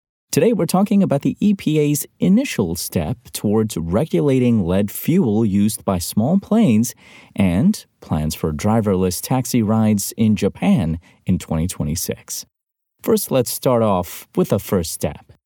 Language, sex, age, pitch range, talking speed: English, male, 30-49, 90-125 Hz, 130 wpm